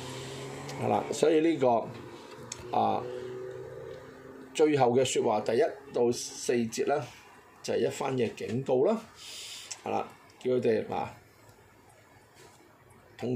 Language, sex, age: Chinese, male, 20-39